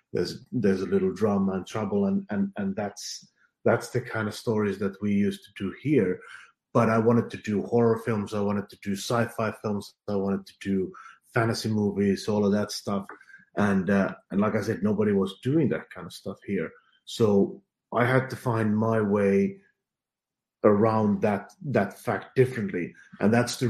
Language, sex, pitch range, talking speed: English, male, 100-125 Hz, 185 wpm